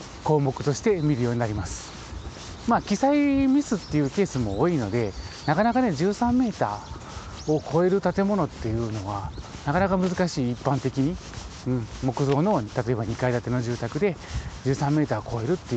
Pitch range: 110-165 Hz